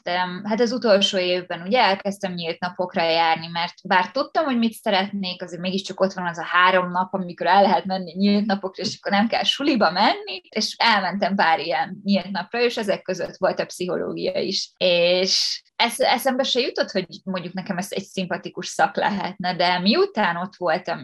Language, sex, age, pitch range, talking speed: Hungarian, female, 20-39, 175-205 Hz, 190 wpm